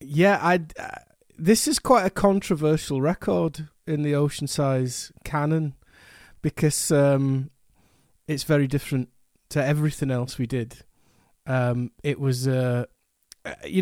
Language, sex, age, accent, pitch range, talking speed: English, male, 30-49, British, 130-155 Hz, 125 wpm